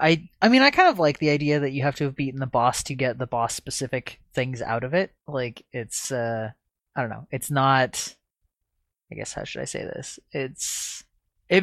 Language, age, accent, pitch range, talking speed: English, 20-39, American, 110-130 Hz, 215 wpm